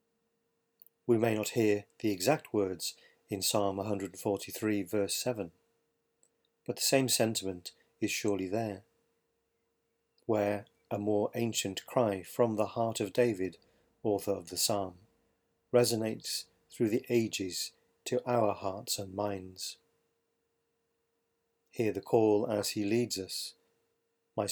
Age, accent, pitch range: 40-59, British, 100-115 Hz